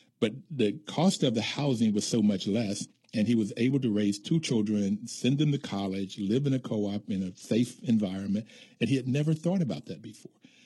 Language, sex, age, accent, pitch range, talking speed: English, male, 50-69, American, 100-120 Hz, 215 wpm